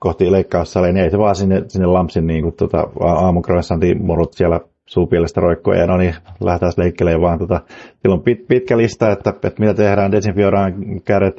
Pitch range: 85-100 Hz